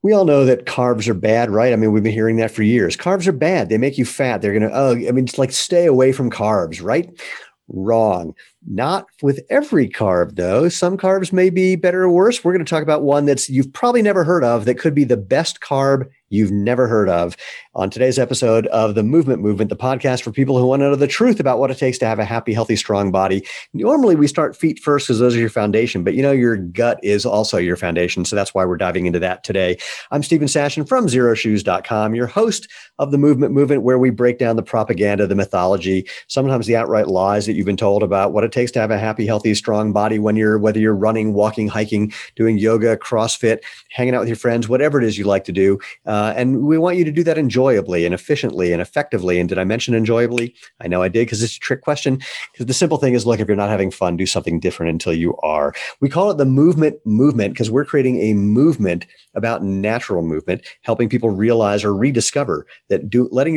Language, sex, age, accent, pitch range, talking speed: English, male, 50-69, American, 105-135 Hz, 240 wpm